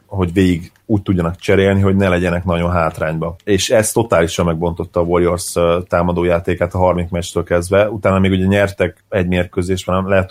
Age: 30-49